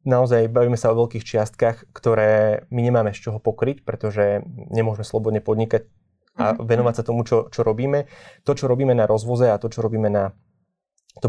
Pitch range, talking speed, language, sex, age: 110-120 Hz, 180 wpm, Slovak, male, 20-39